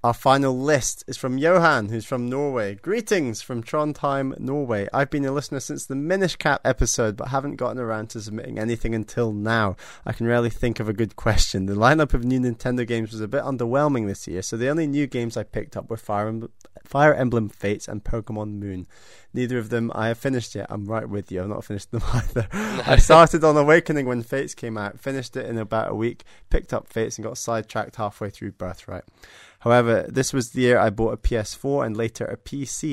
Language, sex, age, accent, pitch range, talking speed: English, male, 20-39, British, 110-130 Hz, 215 wpm